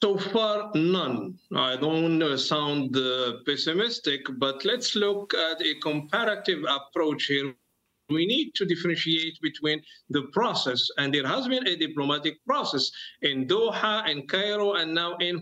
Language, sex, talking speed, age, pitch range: English, male, 150 wpm, 50-69, 155-230 Hz